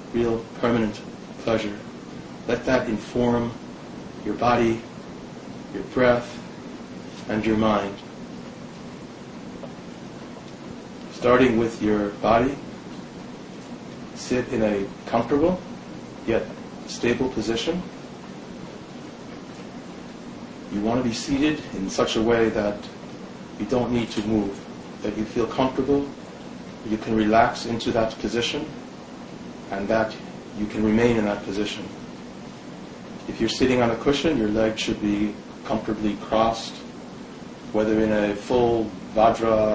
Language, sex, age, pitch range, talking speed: English, male, 40-59, 105-120 Hz, 110 wpm